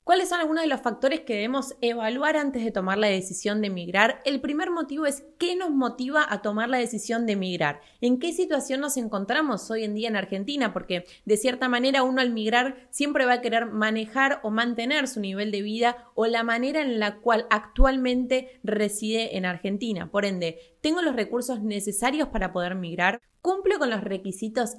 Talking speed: 195 wpm